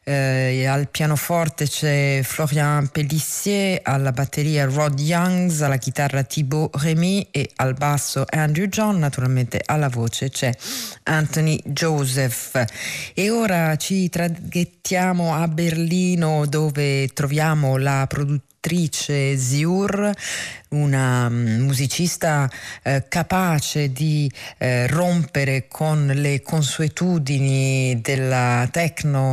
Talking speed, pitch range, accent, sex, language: 95 wpm, 135-165 Hz, native, female, Italian